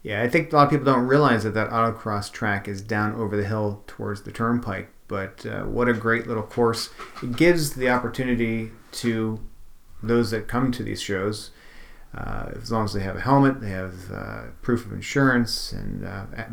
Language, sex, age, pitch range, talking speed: English, male, 40-59, 105-125 Hz, 200 wpm